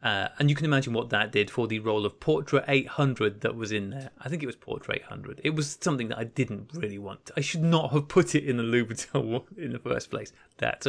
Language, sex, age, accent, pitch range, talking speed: English, male, 20-39, British, 120-150 Hz, 255 wpm